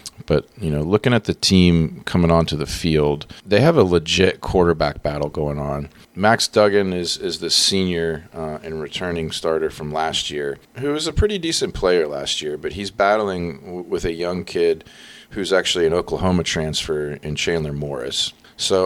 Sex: male